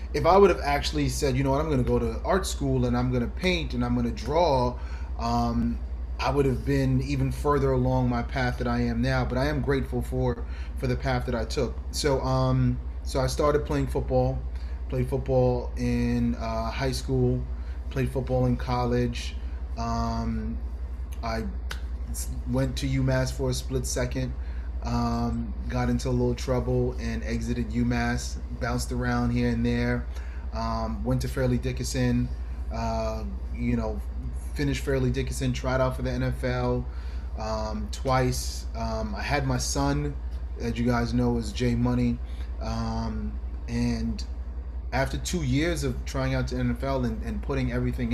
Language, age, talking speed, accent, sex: English, 30-49, 165 wpm, American, male